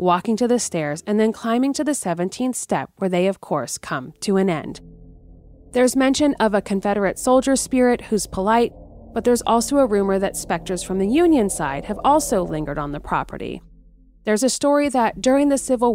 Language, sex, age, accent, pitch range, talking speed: English, female, 30-49, American, 175-255 Hz, 195 wpm